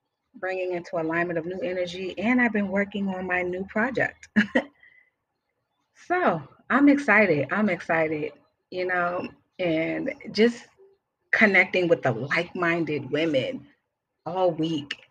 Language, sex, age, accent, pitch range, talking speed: English, female, 30-49, American, 160-210 Hz, 120 wpm